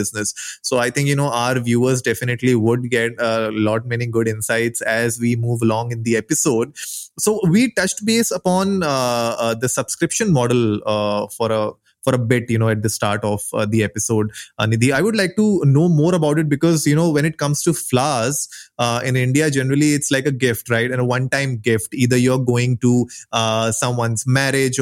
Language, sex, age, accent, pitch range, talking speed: English, male, 20-39, Indian, 115-145 Hz, 210 wpm